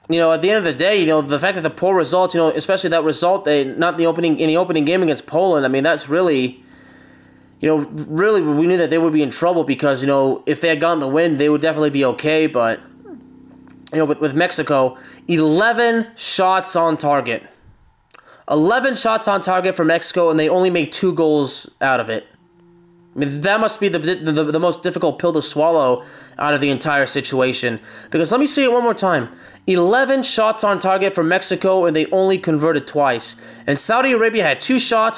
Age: 20-39